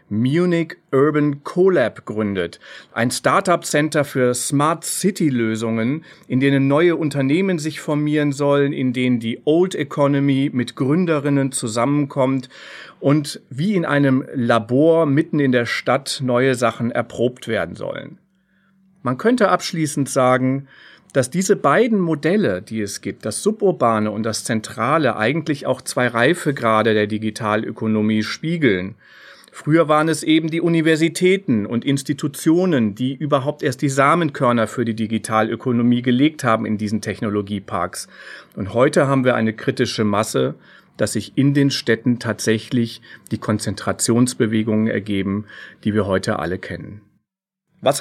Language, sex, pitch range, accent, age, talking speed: German, male, 115-155 Hz, German, 40-59, 130 wpm